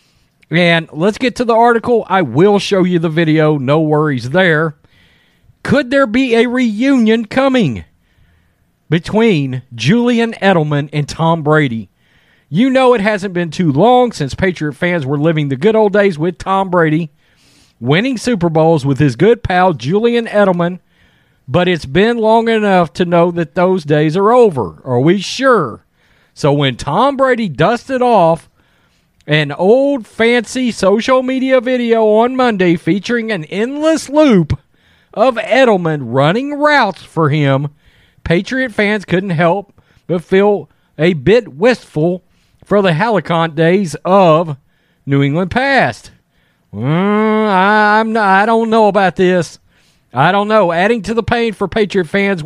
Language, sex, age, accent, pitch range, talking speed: English, male, 40-59, American, 160-230 Hz, 150 wpm